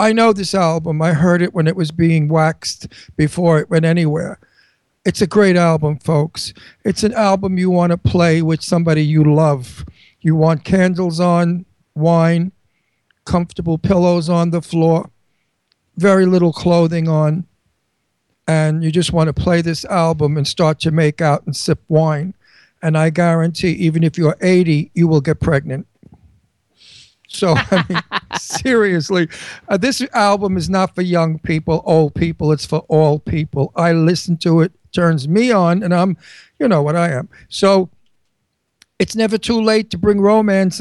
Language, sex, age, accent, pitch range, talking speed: English, male, 50-69, American, 155-185 Hz, 165 wpm